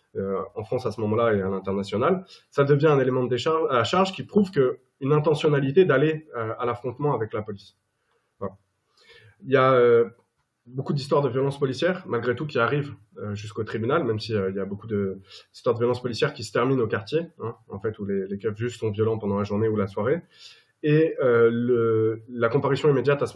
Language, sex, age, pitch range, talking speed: French, male, 20-39, 110-145 Hz, 215 wpm